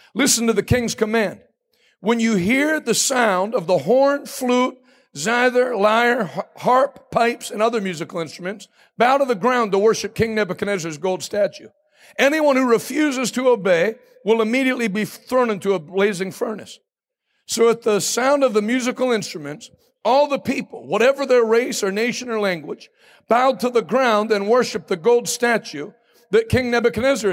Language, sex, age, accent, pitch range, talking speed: English, male, 60-79, American, 185-250 Hz, 165 wpm